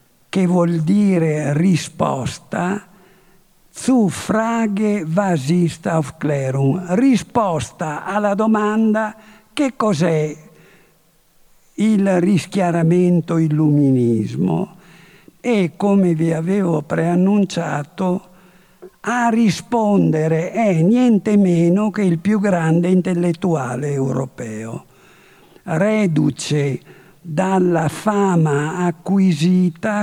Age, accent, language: 60-79, native, Italian